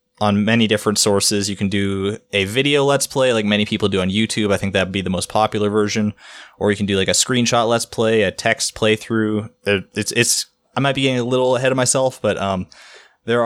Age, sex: 20-39, male